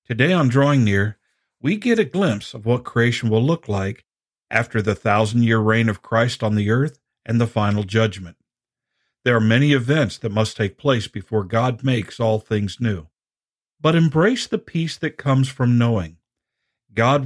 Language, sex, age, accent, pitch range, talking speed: English, male, 50-69, American, 105-125 Hz, 175 wpm